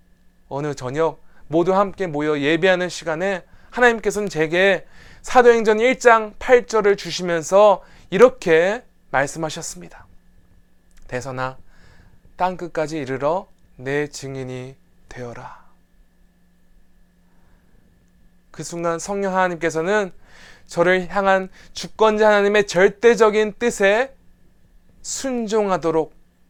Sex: male